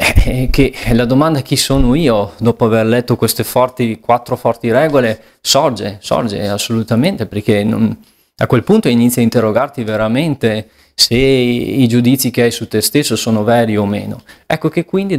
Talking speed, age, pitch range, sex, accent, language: 165 wpm, 20-39, 110-125 Hz, male, native, Italian